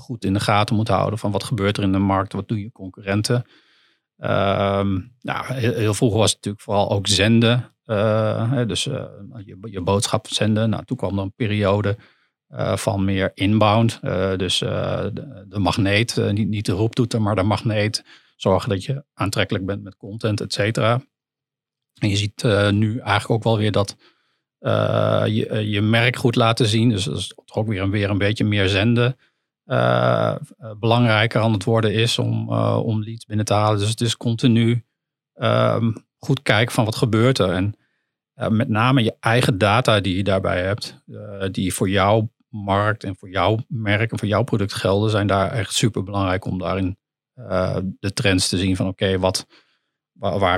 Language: Dutch